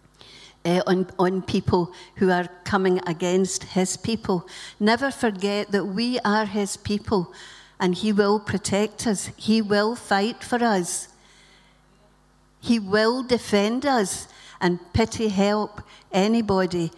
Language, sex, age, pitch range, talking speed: English, female, 60-79, 185-215 Hz, 120 wpm